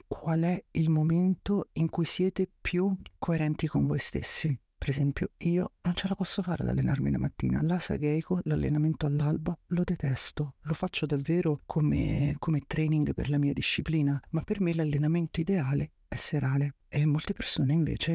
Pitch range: 140-170 Hz